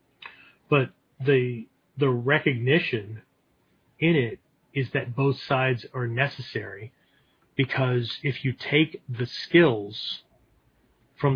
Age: 40-59